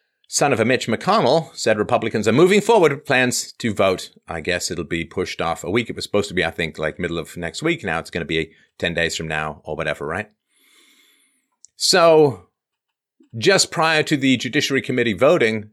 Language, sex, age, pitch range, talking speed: English, male, 40-59, 95-155 Hz, 205 wpm